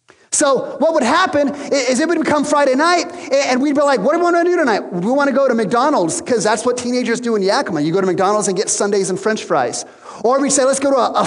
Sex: male